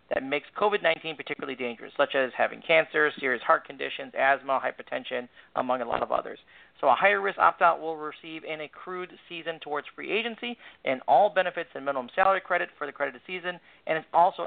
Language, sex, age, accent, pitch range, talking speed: English, male, 40-59, American, 135-180 Hz, 190 wpm